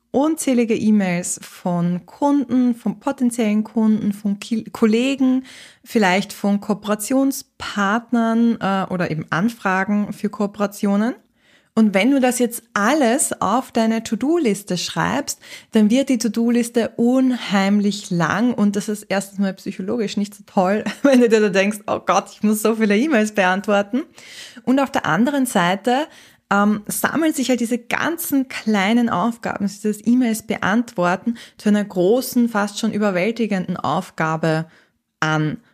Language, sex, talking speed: German, female, 135 wpm